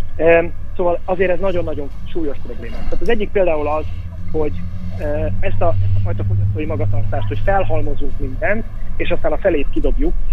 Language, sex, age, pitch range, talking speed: Hungarian, male, 30-49, 100-160 Hz, 150 wpm